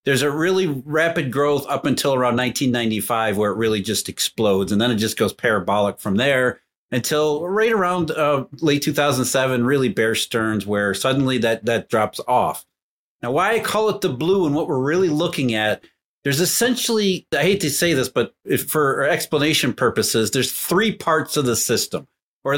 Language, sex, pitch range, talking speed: English, male, 120-160 Hz, 180 wpm